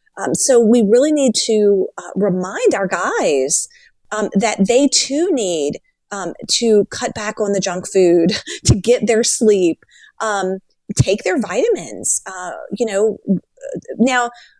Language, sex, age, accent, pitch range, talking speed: English, female, 30-49, American, 190-255 Hz, 145 wpm